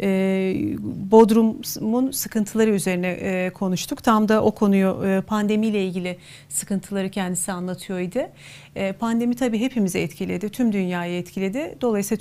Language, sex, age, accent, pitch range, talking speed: Turkish, female, 40-59, native, 185-220 Hz, 105 wpm